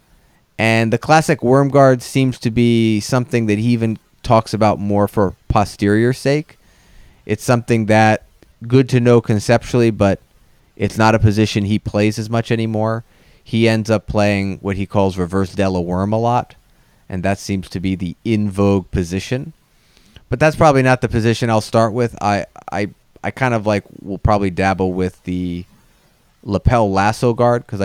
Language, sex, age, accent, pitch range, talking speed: English, male, 30-49, American, 90-115 Hz, 170 wpm